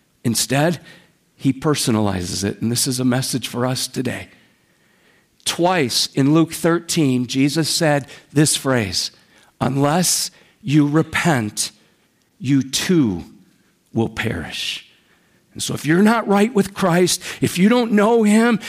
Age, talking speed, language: 50-69, 130 wpm, English